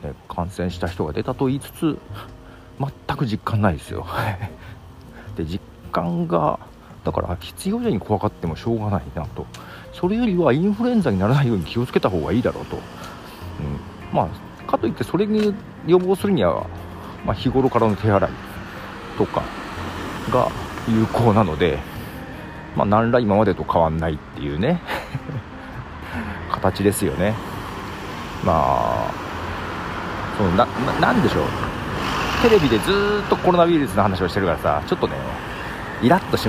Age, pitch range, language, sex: 40-59, 90-150 Hz, Japanese, male